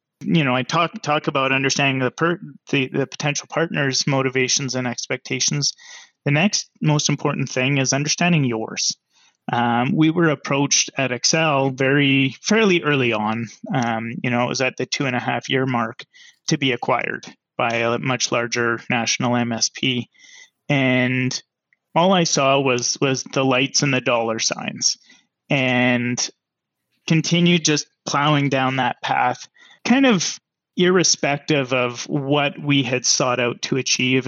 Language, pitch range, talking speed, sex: English, 125-145 Hz, 150 wpm, male